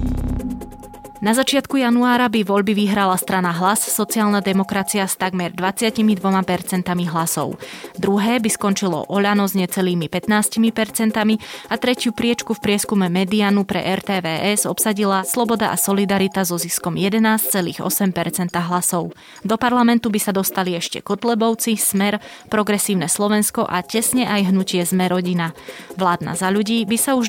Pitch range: 180-220 Hz